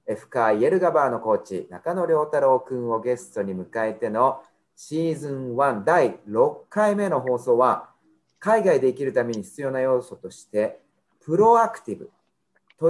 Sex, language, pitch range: male, Japanese, 115-195 Hz